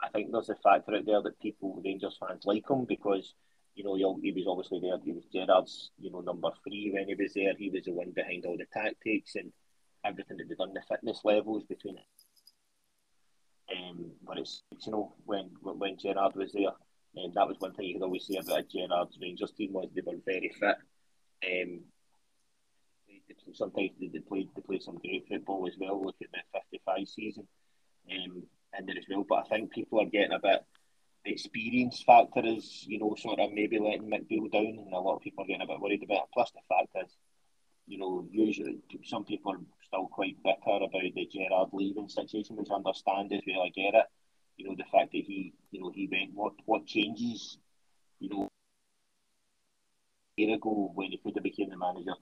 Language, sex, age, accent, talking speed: English, male, 20-39, British, 210 wpm